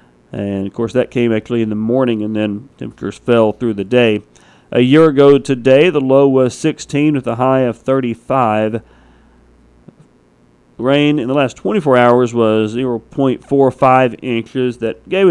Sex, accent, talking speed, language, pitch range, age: male, American, 155 wpm, English, 110-135 Hz, 40-59